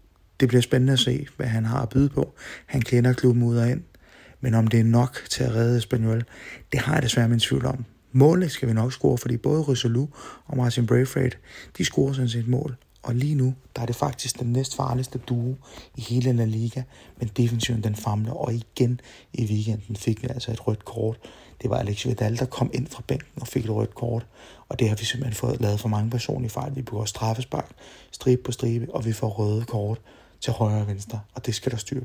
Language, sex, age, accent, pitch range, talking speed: Danish, male, 30-49, native, 110-130 Hz, 230 wpm